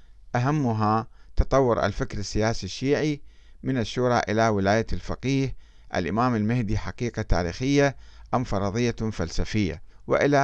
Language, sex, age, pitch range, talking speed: Arabic, male, 50-69, 105-140 Hz, 105 wpm